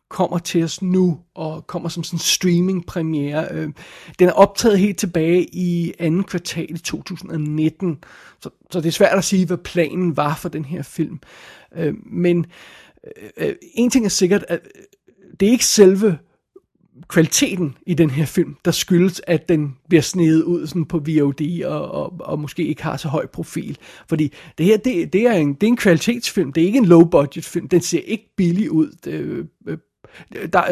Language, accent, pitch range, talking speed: Danish, native, 160-185 Hz, 165 wpm